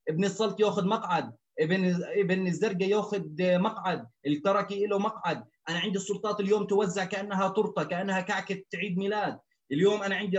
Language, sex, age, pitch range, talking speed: Arabic, male, 30-49, 180-205 Hz, 150 wpm